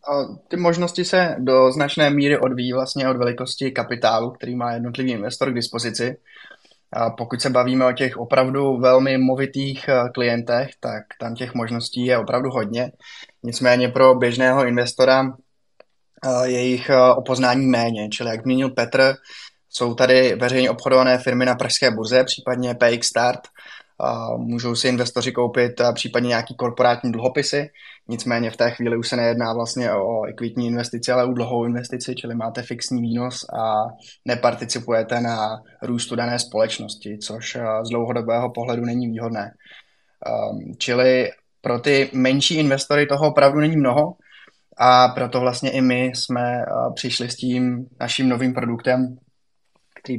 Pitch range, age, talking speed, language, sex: 120-130 Hz, 20-39, 145 wpm, Czech, male